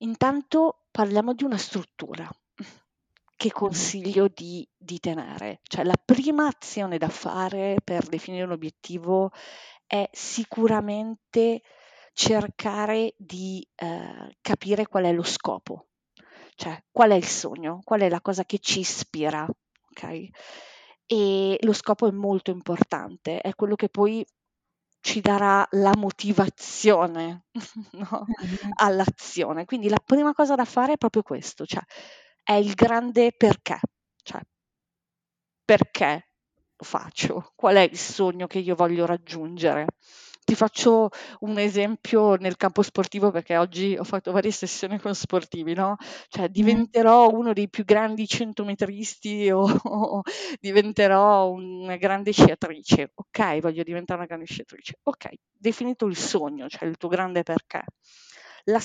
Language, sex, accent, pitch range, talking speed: Italian, female, native, 185-225 Hz, 135 wpm